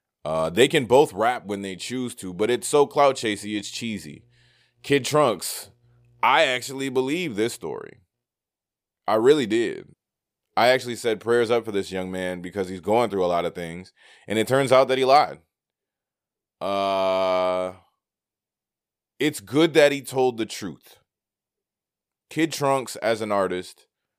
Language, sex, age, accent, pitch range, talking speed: English, male, 20-39, American, 95-130 Hz, 155 wpm